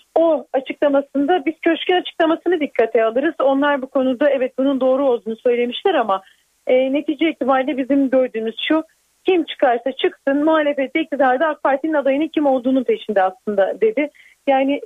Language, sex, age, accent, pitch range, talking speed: Turkish, female, 40-59, native, 245-310 Hz, 145 wpm